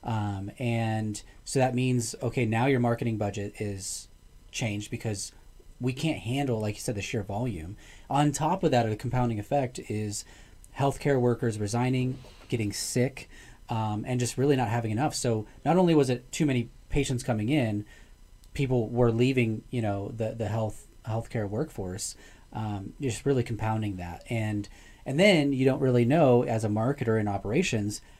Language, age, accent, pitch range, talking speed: English, 30-49, American, 105-130 Hz, 170 wpm